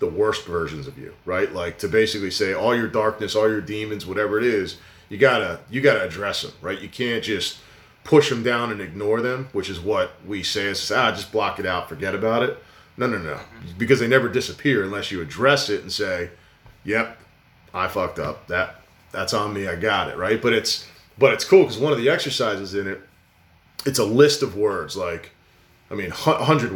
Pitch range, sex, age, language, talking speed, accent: 95-125 Hz, male, 30-49, English, 220 wpm, American